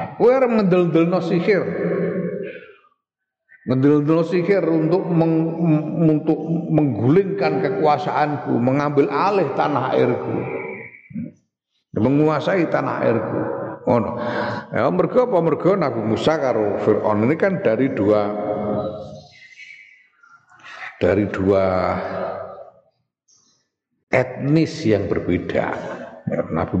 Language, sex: Indonesian, male